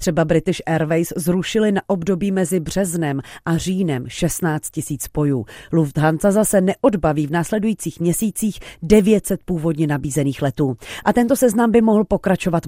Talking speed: 135 wpm